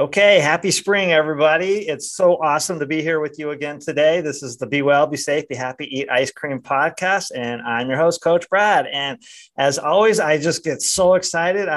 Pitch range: 135-180 Hz